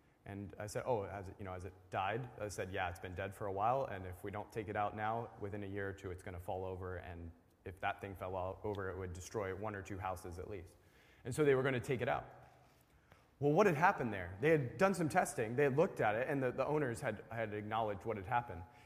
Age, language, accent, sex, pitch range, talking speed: 20-39, English, American, male, 100-140 Hz, 270 wpm